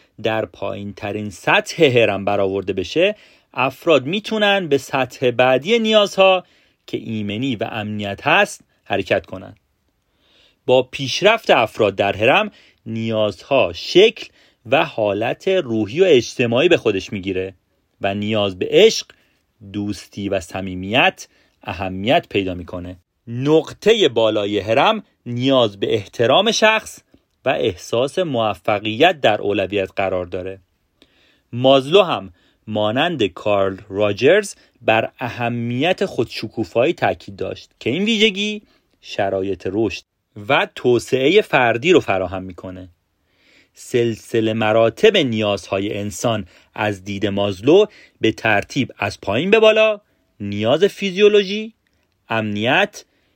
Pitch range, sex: 100-165 Hz, male